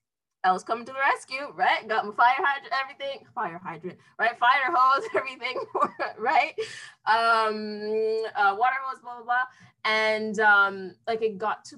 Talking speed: 165 wpm